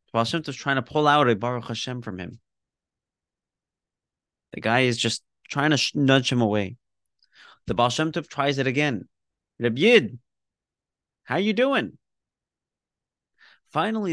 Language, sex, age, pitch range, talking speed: English, male, 30-49, 110-140 Hz, 135 wpm